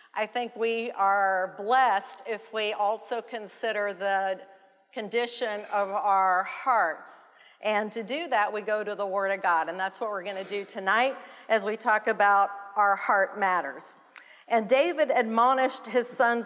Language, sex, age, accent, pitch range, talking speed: English, female, 50-69, American, 210-270 Hz, 165 wpm